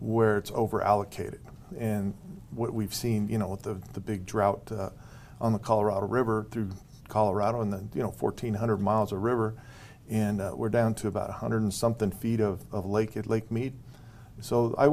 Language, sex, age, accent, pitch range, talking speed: English, male, 50-69, American, 105-125 Hz, 195 wpm